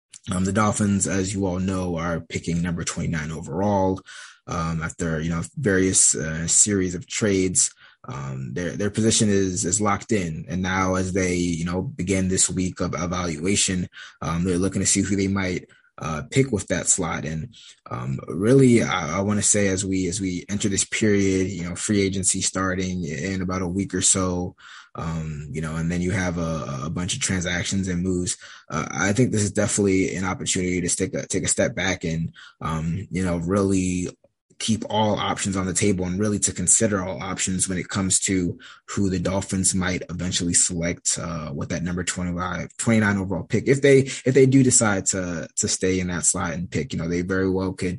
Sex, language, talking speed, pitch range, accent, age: male, English, 205 wpm, 85-100 Hz, American, 20-39